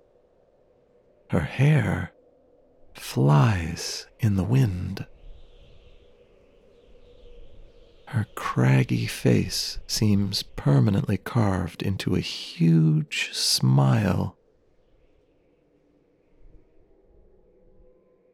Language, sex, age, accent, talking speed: English, male, 40-59, American, 50 wpm